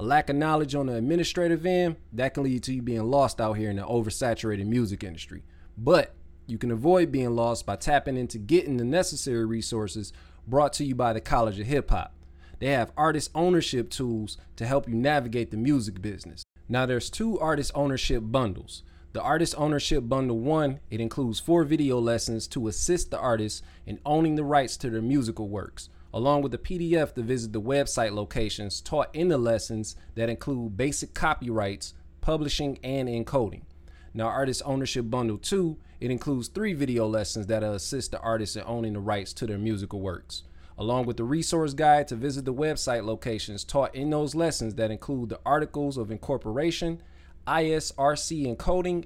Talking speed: 180 wpm